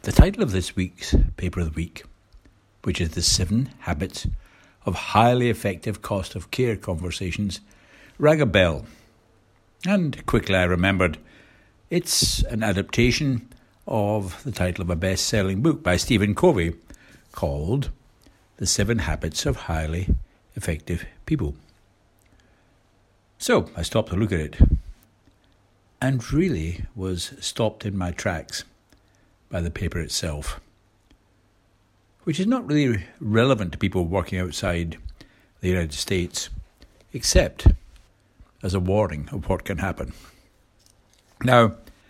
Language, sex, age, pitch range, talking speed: English, male, 60-79, 90-110 Hz, 125 wpm